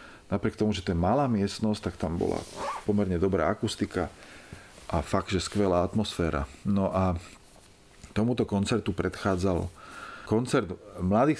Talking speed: 130 wpm